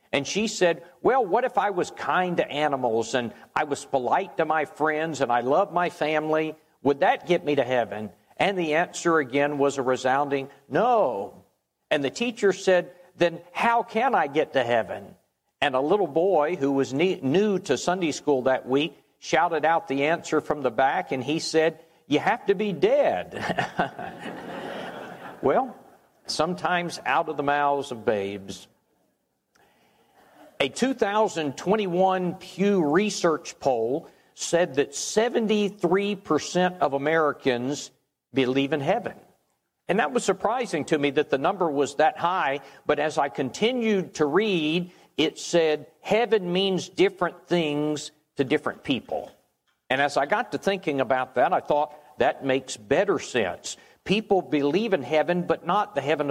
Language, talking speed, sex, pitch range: English, 155 wpm, male, 140-185 Hz